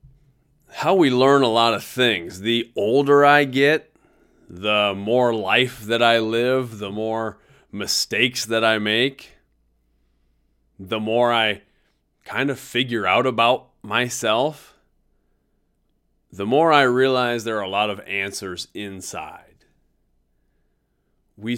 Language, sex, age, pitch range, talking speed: English, male, 30-49, 100-125 Hz, 120 wpm